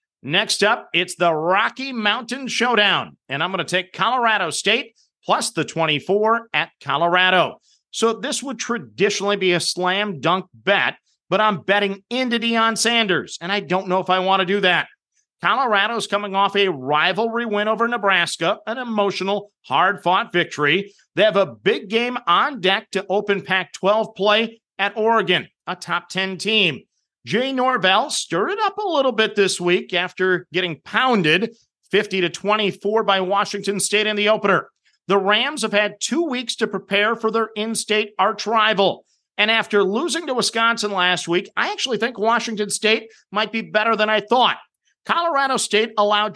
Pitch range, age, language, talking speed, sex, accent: 185-230 Hz, 50-69, English, 165 wpm, male, American